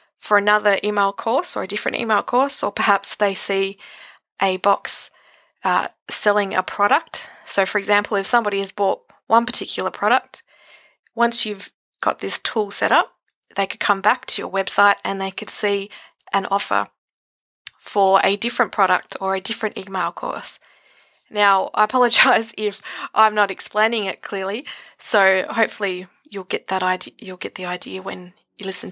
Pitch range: 195-220 Hz